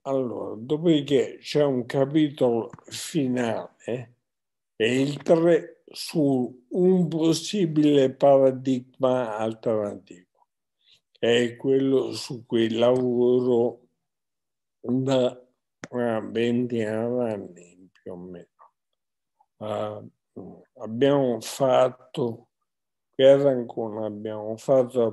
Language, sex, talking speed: Italian, male, 75 wpm